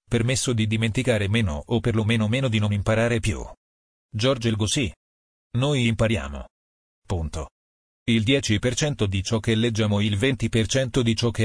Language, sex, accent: Italian, male, native